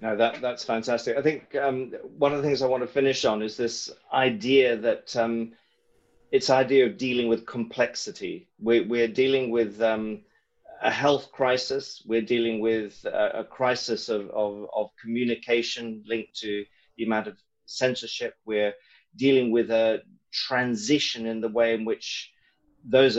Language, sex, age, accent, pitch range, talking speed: English, male, 30-49, British, 110-125 Hz, 165 wpm